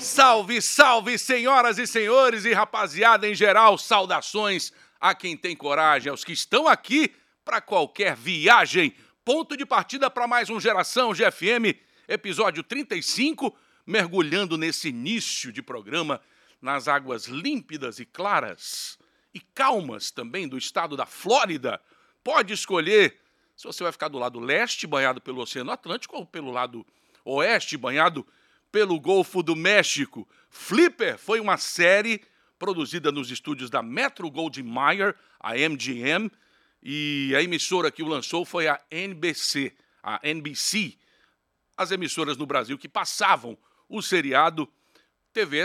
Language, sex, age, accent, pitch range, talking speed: Portuguese, male, 60-79, Brazilian, 155-240 Hz, 135 wpm